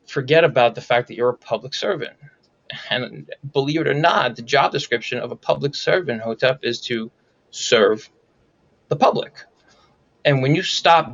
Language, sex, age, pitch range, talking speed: English, male, 20-39, 120-140 Hz, 165 wpm